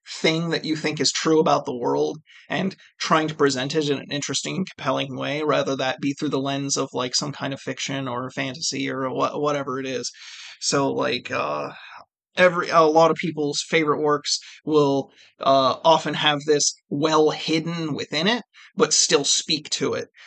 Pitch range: 140-155 Hz